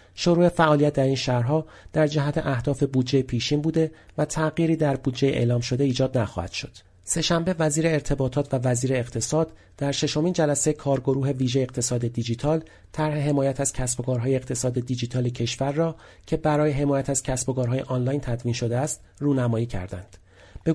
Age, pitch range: 40-59, 120-150 Hz